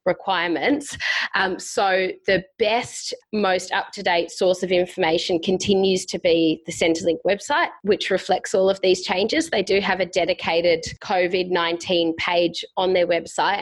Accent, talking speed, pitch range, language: Australian, 140 wpm, 170-195 Hz, English